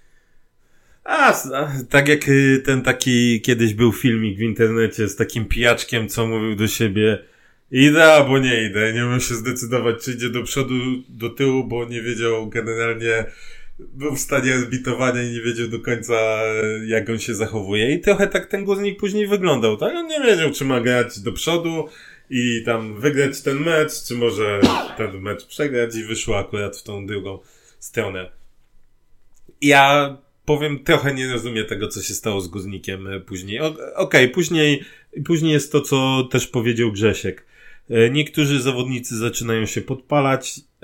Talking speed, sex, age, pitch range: 160 wpm, male, 20-39, 115-135 Hz